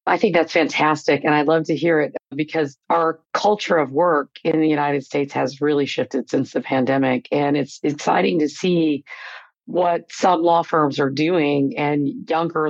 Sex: female